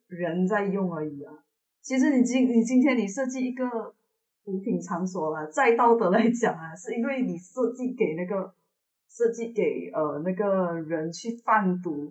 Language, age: Chinese, 20-39